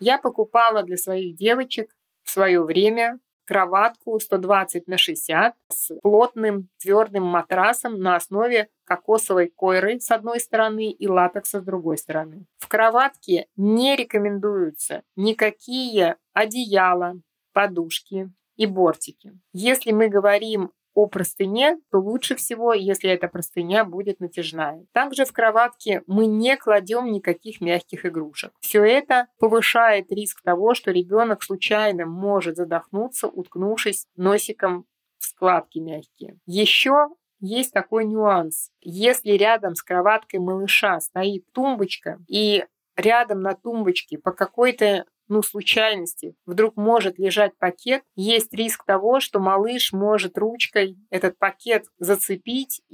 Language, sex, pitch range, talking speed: Russian, female, 185-225 Hz, 120 wpm